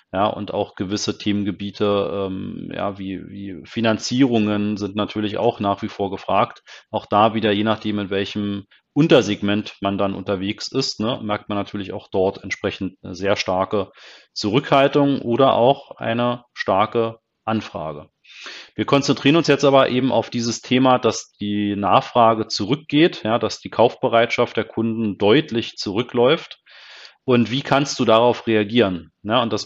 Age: 30-49